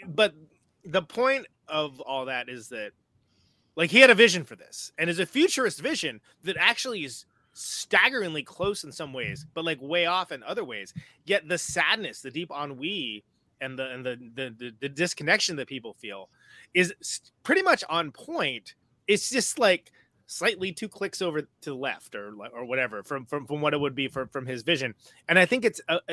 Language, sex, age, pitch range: English, male, 30-49, 130-185 Hz